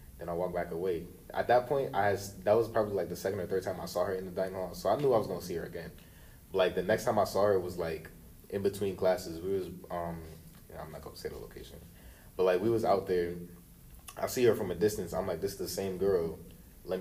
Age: 20-39